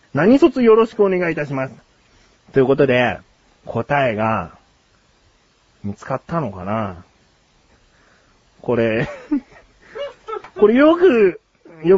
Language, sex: Japanese, male